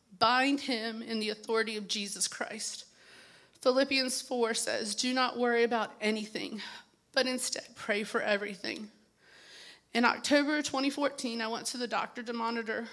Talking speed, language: 145 wpm, English